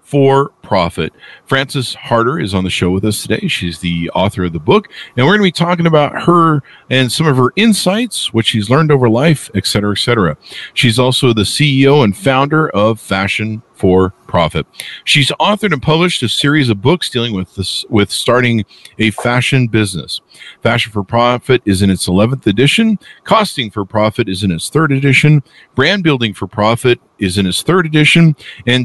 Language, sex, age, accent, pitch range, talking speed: English, male, 50-69, American, 105-145 Hz, 190 wpm